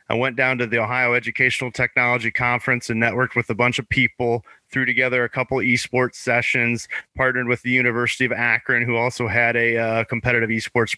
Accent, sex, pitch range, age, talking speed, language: American, male, 115-130 Hz, 30-49, 195 wpm, English